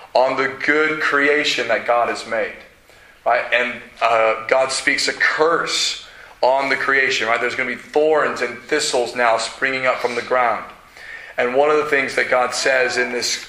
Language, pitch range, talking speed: English, 125-150 Hz, 185 wpm